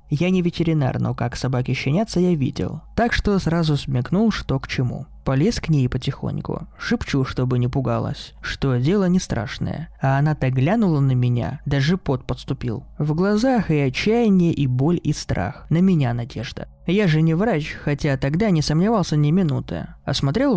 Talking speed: 170 wpm